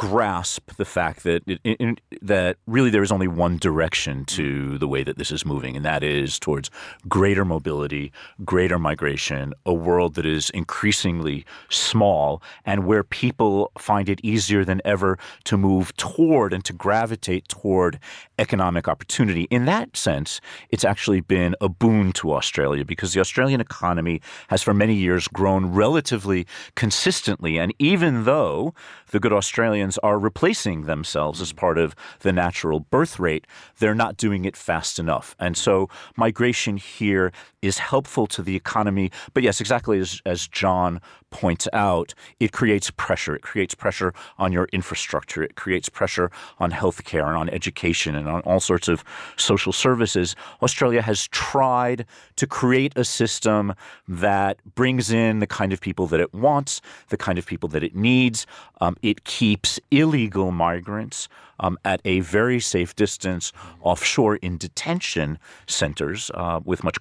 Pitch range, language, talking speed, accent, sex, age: 90-110 Hz, English, 160 wpm, American, male, 40-59